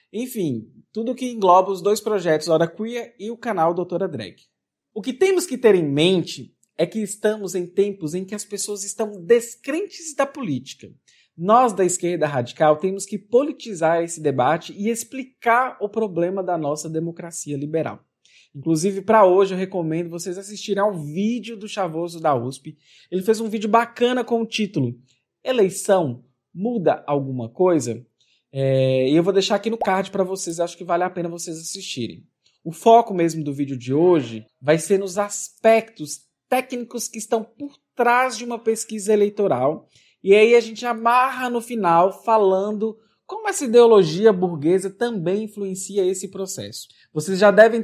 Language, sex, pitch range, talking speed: Portuguese, male, 160-220 Hz, 165 wpm